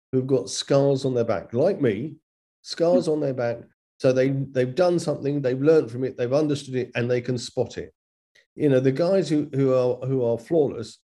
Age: 40-59